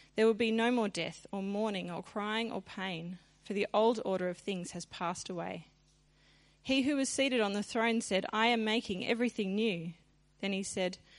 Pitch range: 180-225 Hz